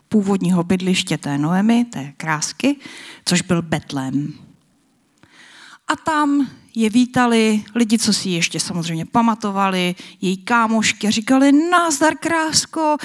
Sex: female